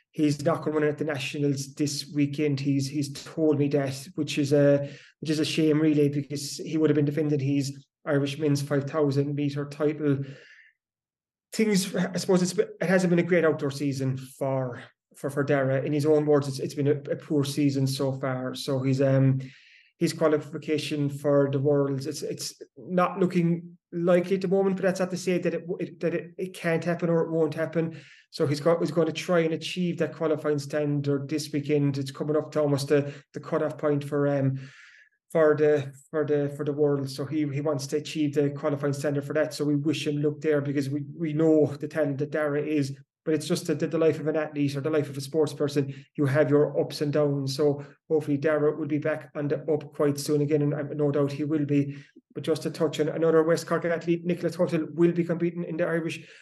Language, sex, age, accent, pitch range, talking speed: English, male, 20-39, British, 145-160 Hz, 225 wpm